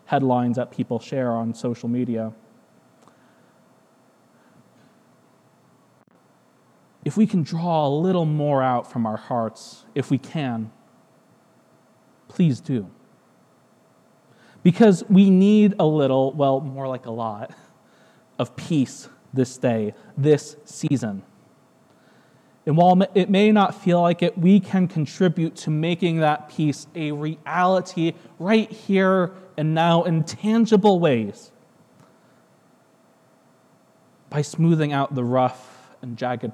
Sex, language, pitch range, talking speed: male, English, 125-170 Hz, 115 wpm